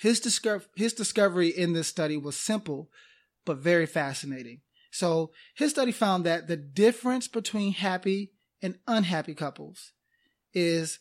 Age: 30-49